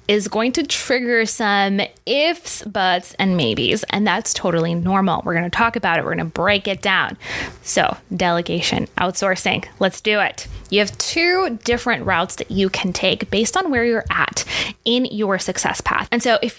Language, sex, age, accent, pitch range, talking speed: English, female, 20-39, American, 185-235 Hz, 190 wpm